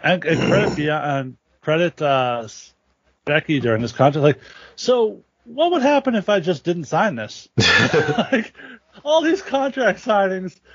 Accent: American